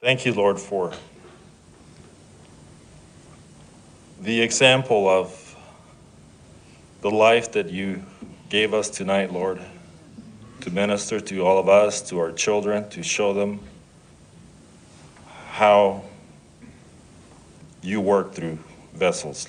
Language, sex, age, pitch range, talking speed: English, male, 40-59, 85-100 Hz, 100 wpm